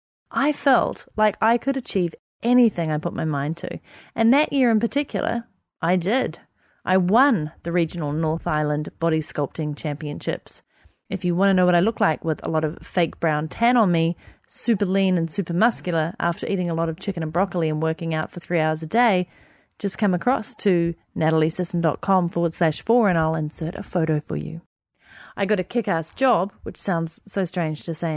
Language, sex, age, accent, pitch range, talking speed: English, female, 30-49, Australian, 160-225 Hz, 200 wpm